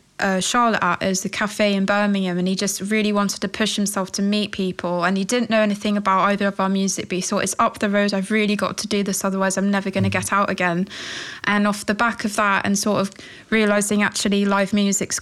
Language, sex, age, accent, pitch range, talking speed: English, female, 20-39, British, 195-220 Hz, 250 wpm